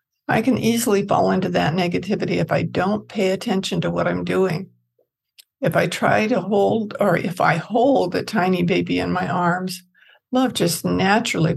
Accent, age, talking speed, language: American, 60-79, 175 wpm, English